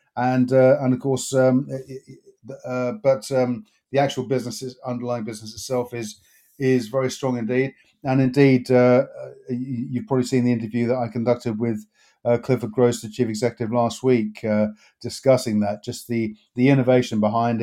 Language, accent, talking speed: English, British, 165 wpm